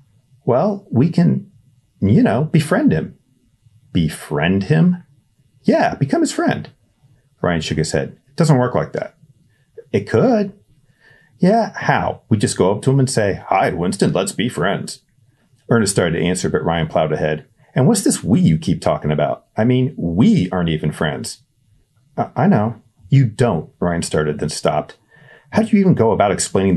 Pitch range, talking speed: 90-140 Hz, 170 wpm